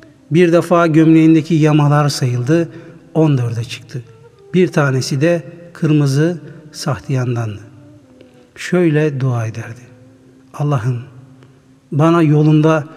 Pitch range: 130-170 Hz